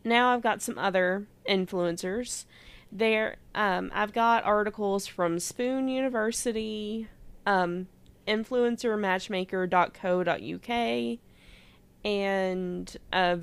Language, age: English, 20-39